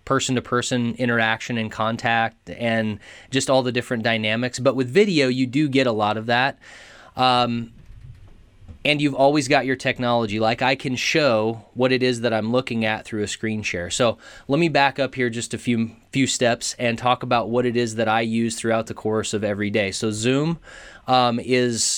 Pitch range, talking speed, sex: 110-130 Hz, 200 wpm, male